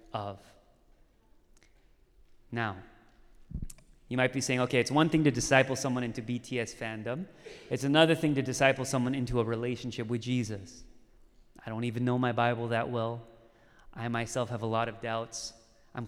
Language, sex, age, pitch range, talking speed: English, male, 30-49, 120-150 Hz, 160 wpm